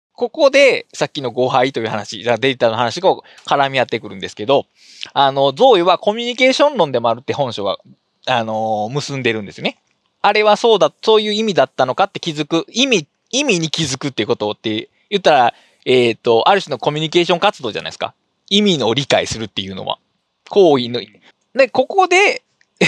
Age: 20-39